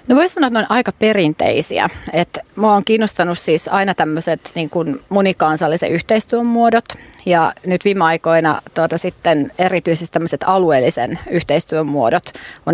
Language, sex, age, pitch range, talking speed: Finnish, female, 30-49, 165-195 Hz, 145 wpm